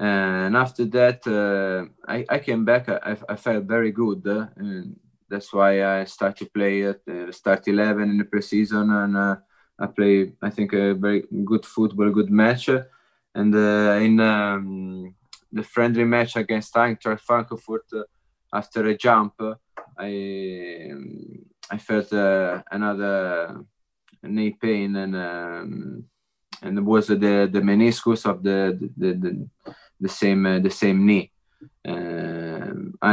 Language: English